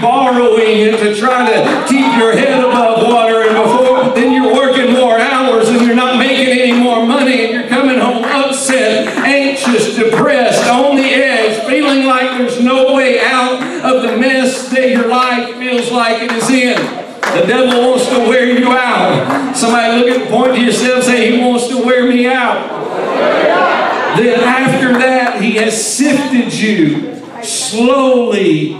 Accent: American